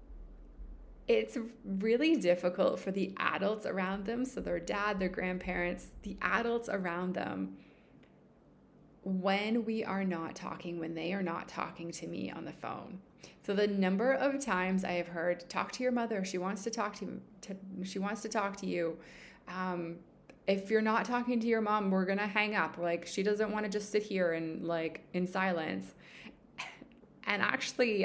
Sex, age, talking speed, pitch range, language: female, 20-39, 175 wpm, 175-210 Hz, English